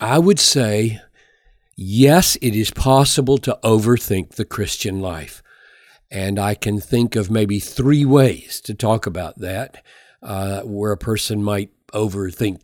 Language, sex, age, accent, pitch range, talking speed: English, male, 50-69, American, 105-140 Hz, 140 wpm